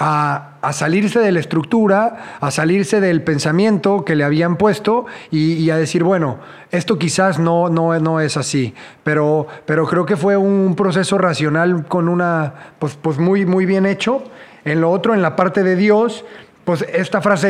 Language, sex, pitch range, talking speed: English, male, 160-195 Hz, 185 wpm